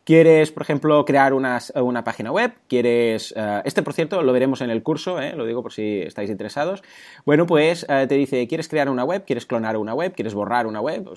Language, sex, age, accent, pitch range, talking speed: Spanish, male, 20-39, Spanish, 125-175 Hz, 230 wpm